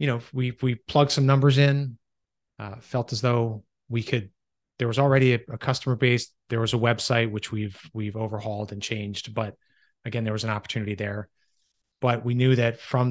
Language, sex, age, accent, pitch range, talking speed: English, male, 30-49, American, 105-135 Hz, 195 wpm